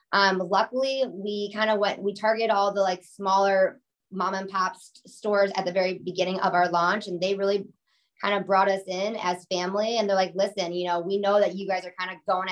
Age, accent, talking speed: 20-39, American, 235 wpm